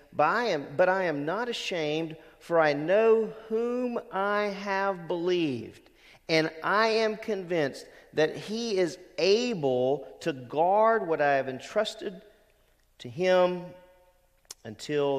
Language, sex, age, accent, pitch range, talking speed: English, male, 50-69, American, 150-205 Hz, 120 wpm